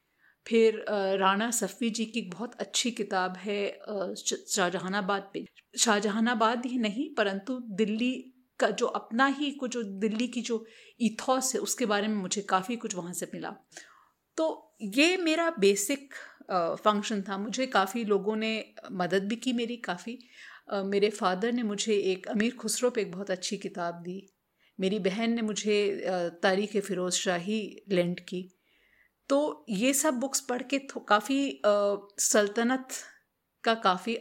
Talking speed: 145 wpm